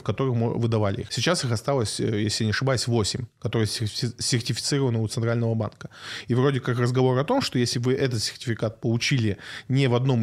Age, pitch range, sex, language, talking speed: 20-39, 115-135 Hz, male, Russian, 175 wpm